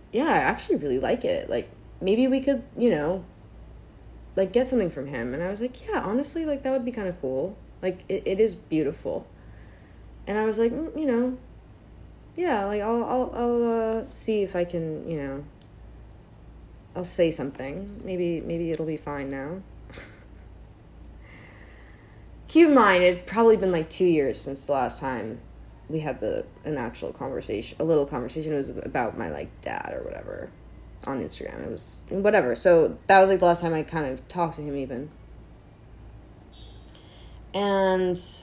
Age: 20-39